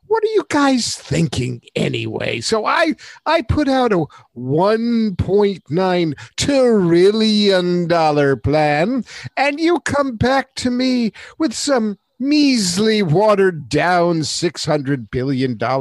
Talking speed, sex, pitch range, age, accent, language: 105 wpm, male, 145-220 Hz, 50-69, American, English